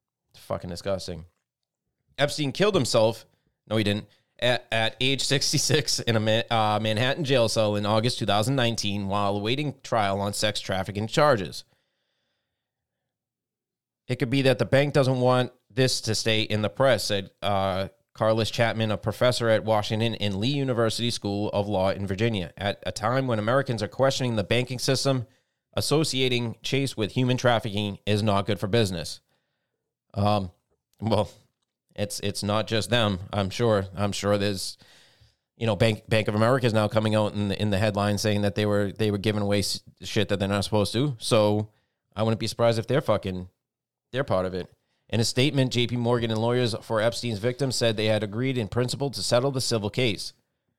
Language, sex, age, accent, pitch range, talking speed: English, male, 30-49, American, 105-125 Hz, 180 wpm